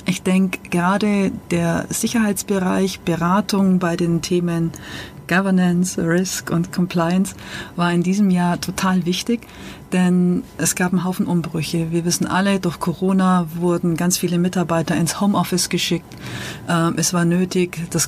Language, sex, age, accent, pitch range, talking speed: German, female, 40-59, German, 170-195 Hz, 135 wpm